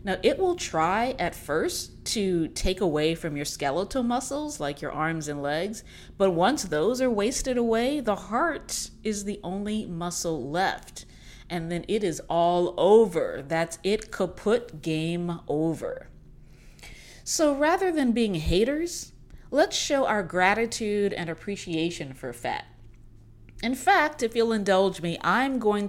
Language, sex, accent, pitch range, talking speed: English, female, American, 160-225 Hz, 145 wpm